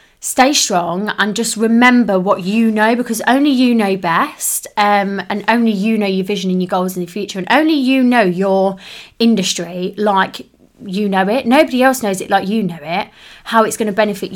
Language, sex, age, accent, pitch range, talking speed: English, female, 20-39, British, 195-230 Hz, 205 wpm